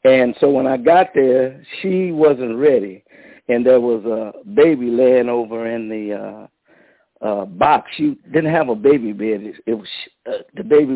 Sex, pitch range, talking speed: male, 120-155 Hz, 175 wpm